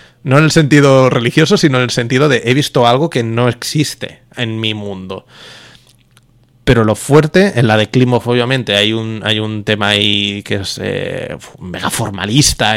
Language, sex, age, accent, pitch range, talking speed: Spanish, male, 30-49, Spanish, 110-130 Hz, 175 wpm